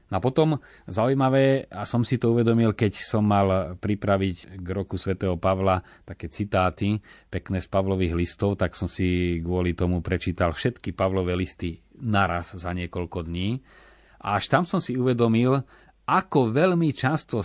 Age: 30-49